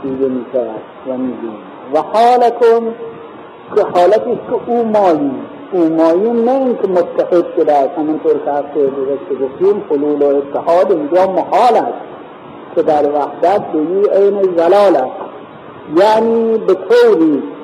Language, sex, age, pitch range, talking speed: Persian, male, 50-69, 150-230 Hz, 110 wpm